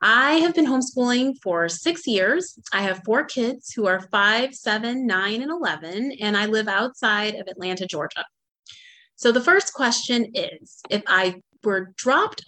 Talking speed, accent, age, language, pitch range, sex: 165 wpm, American, 30-49, English, 205-260 Hz, female